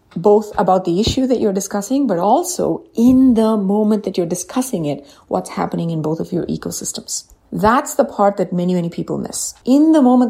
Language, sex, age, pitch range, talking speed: English, female, 30-49, 180-220 Hz, 200 wpm